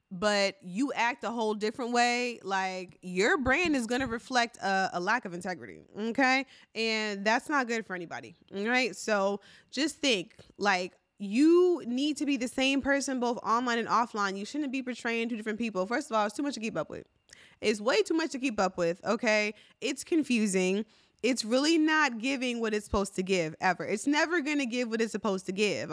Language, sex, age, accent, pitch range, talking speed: English, female, 20-39, American, 200-250 Hz, 210 wpm